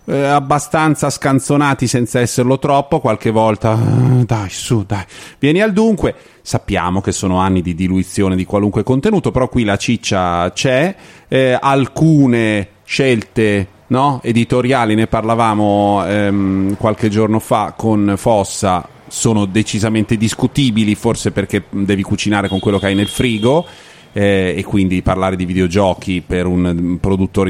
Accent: native